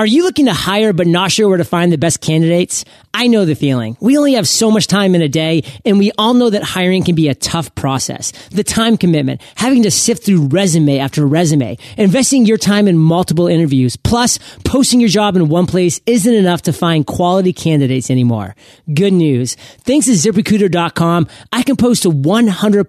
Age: 30-49